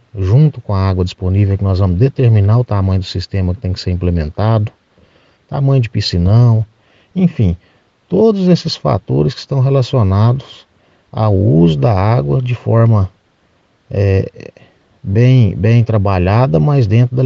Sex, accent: male, Brazilian